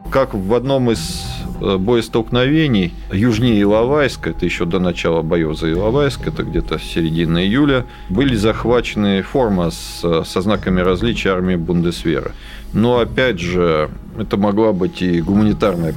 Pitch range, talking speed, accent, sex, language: 90-115 Hz, 130 wpm, native, male, Russian